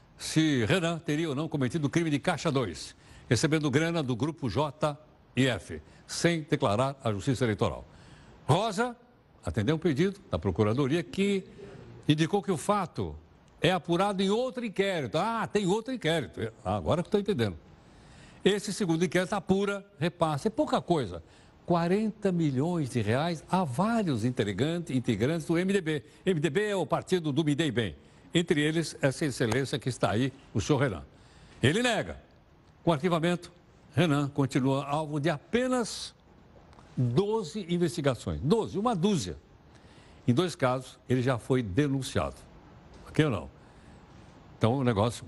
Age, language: 60-79, Portuguese